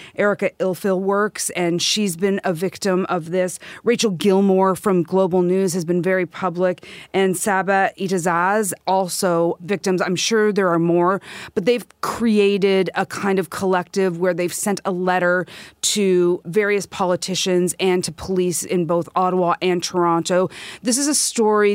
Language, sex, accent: English, female, American